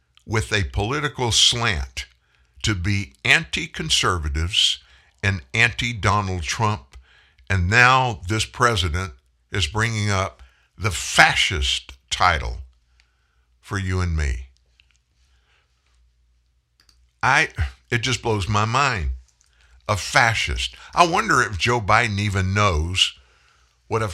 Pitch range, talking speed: 70-115 Hz, 100 wpm